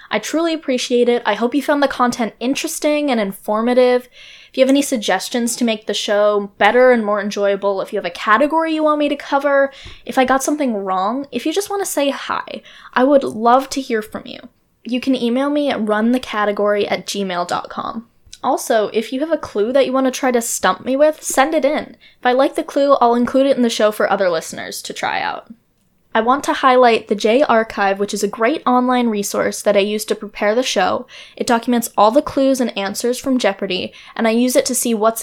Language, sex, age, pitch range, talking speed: English, female, 10-29, 210-270 Hz, 225 wpm